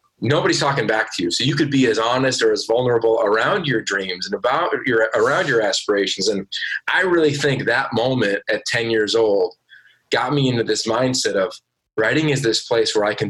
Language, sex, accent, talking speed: English, male, American, 210 wpm